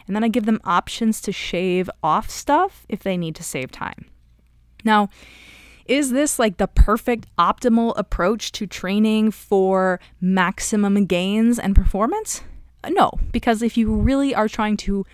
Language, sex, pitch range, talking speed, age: English, female, 180-225 Hz, 155 wpm, 20-39